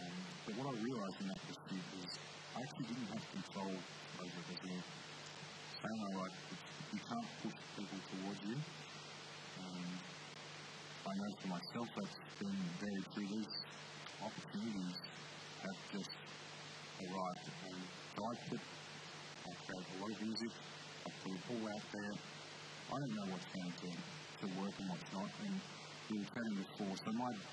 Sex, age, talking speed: male, 50-69, 160 wpm